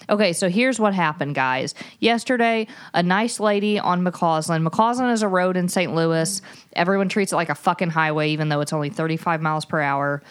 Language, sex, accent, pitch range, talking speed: English, female, American, 155-205 Hz, 200 wpm